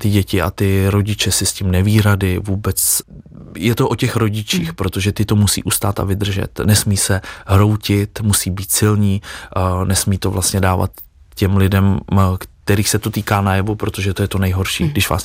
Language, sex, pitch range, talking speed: Czech, male, 95-105 Hz, 180 wpm